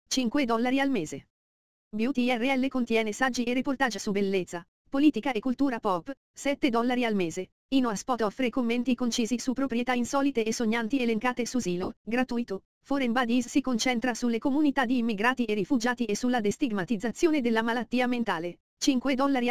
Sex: female